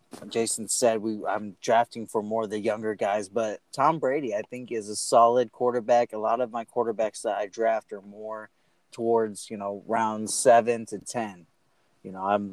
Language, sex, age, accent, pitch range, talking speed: English, male, 20-39, American, 100-120 Hz, 190 wpm